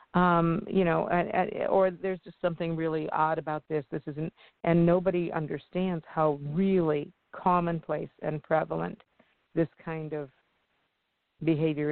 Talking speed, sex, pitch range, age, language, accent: 125 wpm, female, 155-180 Hz, 50-69, English, American